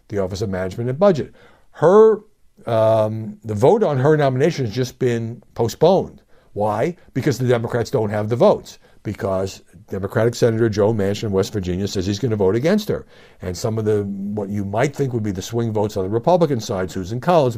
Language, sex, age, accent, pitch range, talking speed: English, male, 60-79, American, 110-155 Hz, 200 wpm